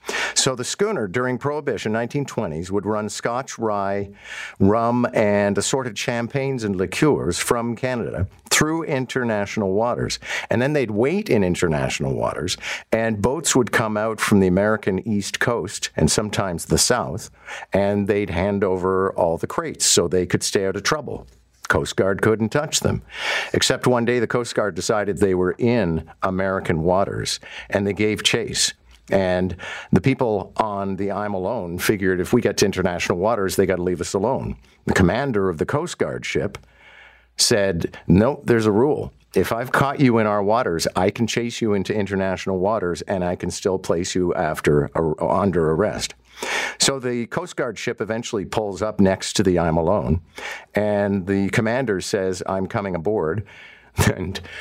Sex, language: male, English